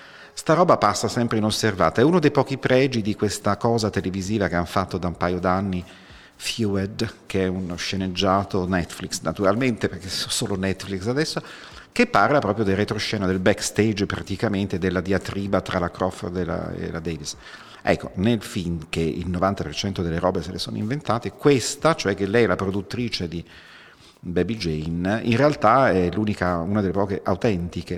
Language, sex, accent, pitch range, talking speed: Italian, male, native, 90-110 Hz, 170 wpm